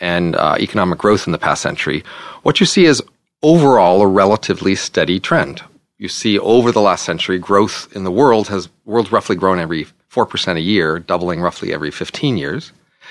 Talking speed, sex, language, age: 185 wpm, male, English, 40-59